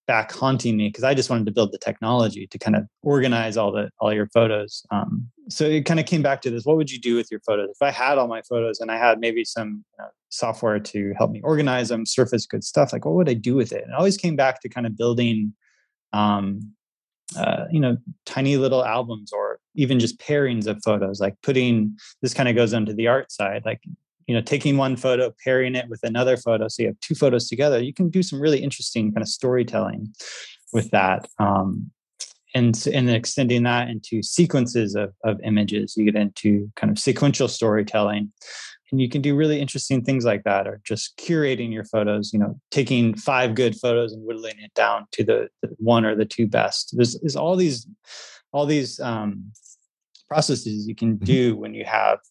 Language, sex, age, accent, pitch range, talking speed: English, male, 20-39, American, 110-135 Hz, 215 wpm